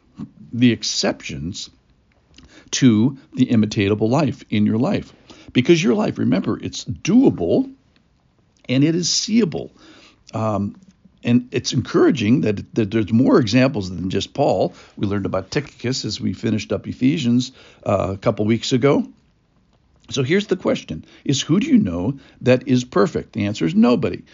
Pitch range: 95-125 Hz